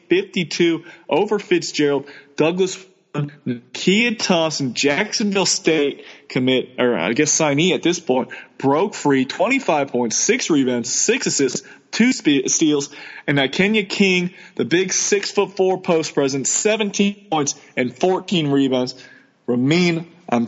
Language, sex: English, male